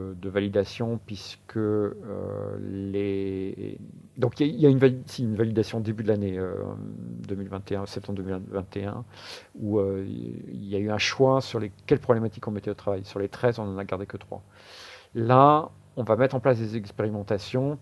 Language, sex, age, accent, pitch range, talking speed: French, male, 50-69, French, 100-125 Hz, 190 wpm